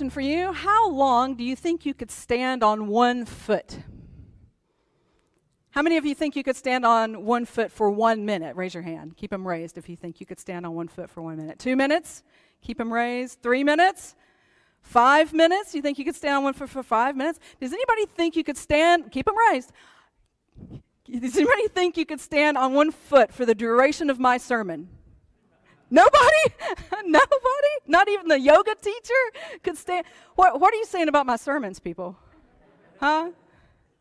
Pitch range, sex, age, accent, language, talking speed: 240-330 Hz, female, 40-59, American, English, 190 wpm